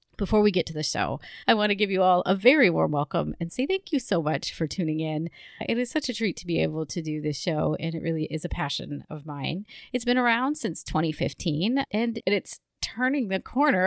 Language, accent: English, American